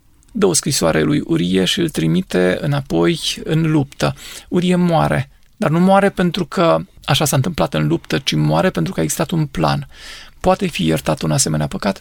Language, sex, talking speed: Romanian, male, 185 wpm